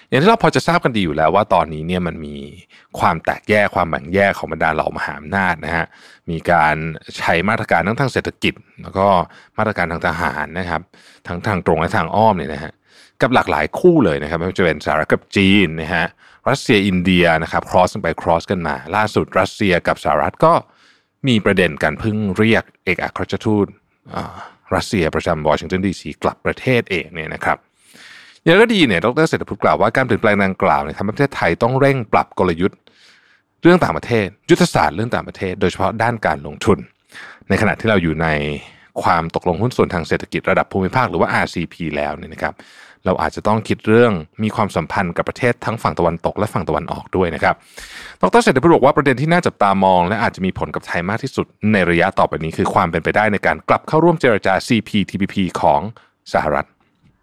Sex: male